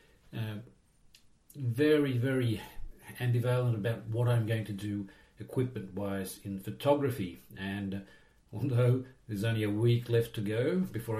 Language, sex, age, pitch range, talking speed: English, male, 50-69, 105-130 Hz, 130 wpm